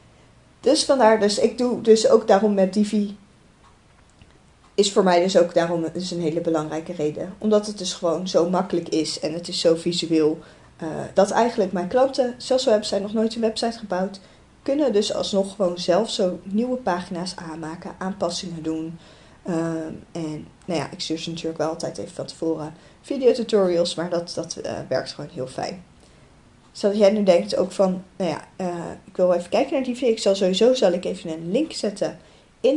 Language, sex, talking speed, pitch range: Dutch, female, 190 wpm, 170-215 Hz